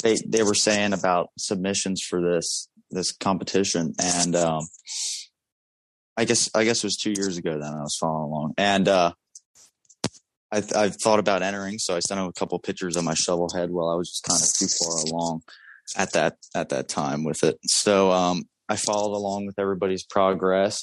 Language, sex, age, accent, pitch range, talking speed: English, male, 20-39, American, 90-105 Hz, 200 wpm